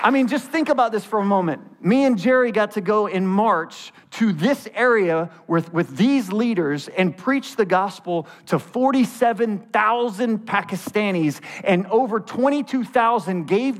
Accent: American